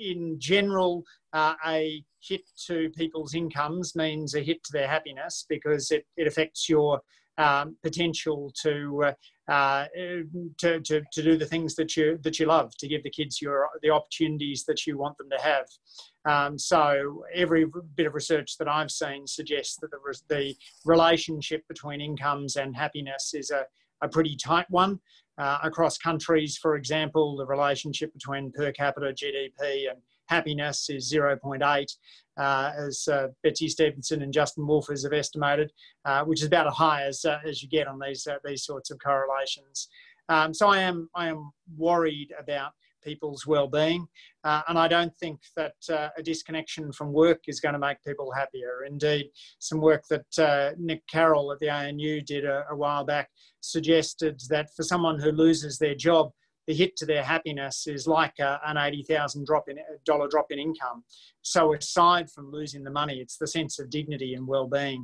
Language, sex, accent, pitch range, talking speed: English, male, Australian, 140-160 Hz, 175 wpm